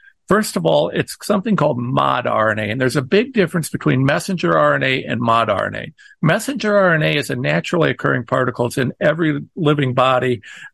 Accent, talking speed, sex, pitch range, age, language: American, 175 wpm, male, 135-200 Hz, 50-69, English